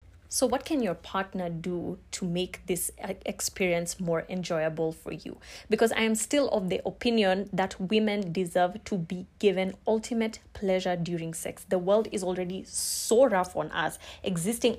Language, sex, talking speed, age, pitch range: English, female, 160 wpm, 20-39, 170-205 Hz